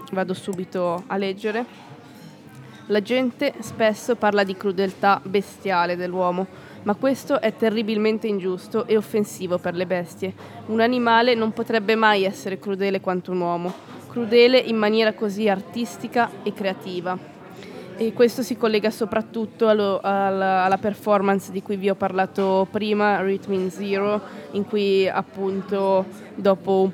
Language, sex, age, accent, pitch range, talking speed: Italian, female, 20-39, native, 190-215 Hz, 135 wpm